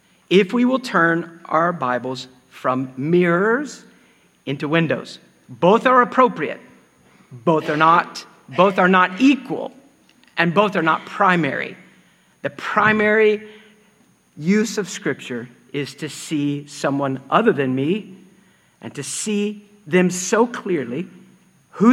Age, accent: 50-69, American